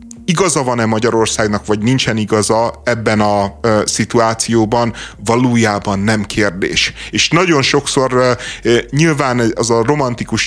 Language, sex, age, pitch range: Hungarian, male, 30-49, 110-130 Hz